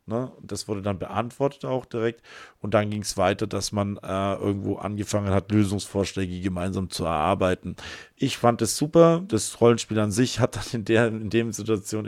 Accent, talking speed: German, 185 wpm